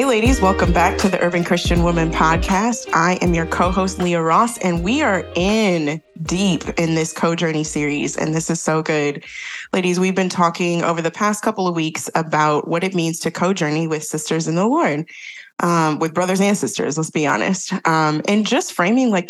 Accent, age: American, 20-39